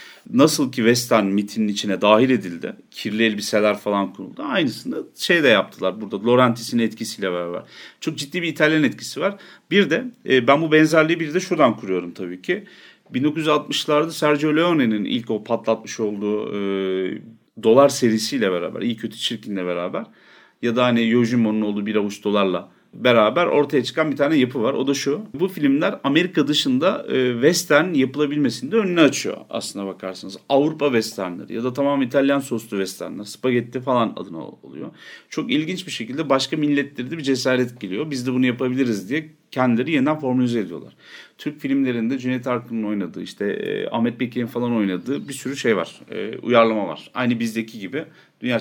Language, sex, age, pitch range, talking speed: Turkish, male, 40-59, 110-145 Hz, 165 wpm